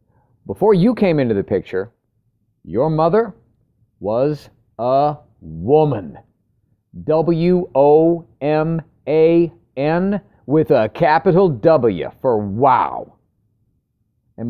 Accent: American